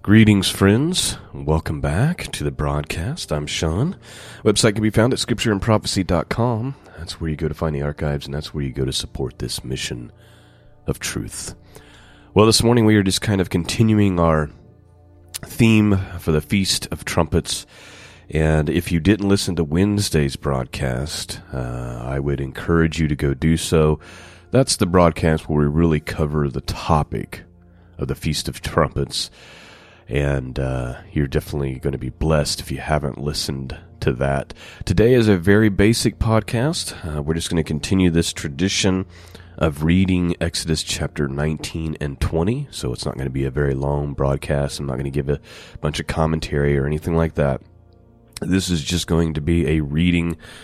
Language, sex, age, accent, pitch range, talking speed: English, male, 30-49, American, 75-95 Hz, 175 wpm